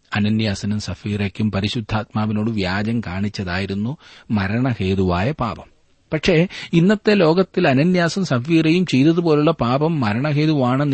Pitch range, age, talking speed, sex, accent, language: 100-140 Hz, 30-49, 80 wpm, male, native, Malayalam